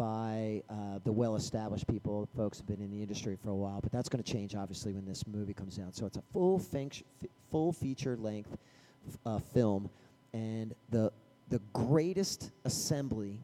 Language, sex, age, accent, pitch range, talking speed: English, male, 40-59, American, 105-130 Hz, 190 wpm